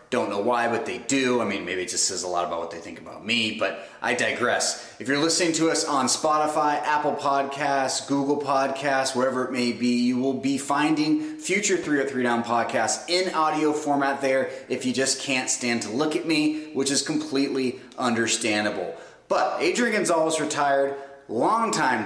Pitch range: 115-150 Hz